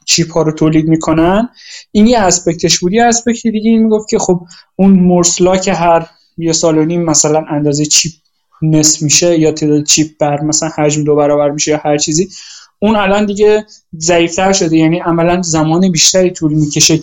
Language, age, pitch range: Persian, 20-39, 155-195 Hz